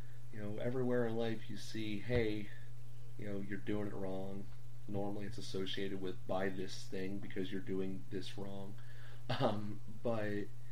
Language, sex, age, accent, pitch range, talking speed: English, male, 30-49, American, 100-120 Hz, 155 wpm